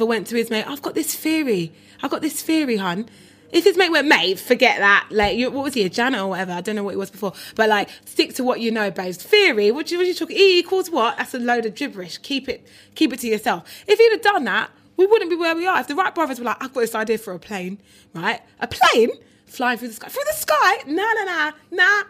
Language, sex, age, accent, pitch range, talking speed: English, female, 20-39, British, 215-340 Hz, 275 wpm